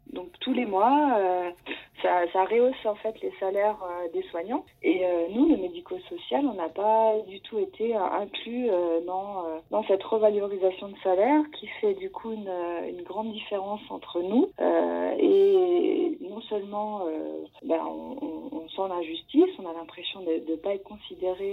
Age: 30-49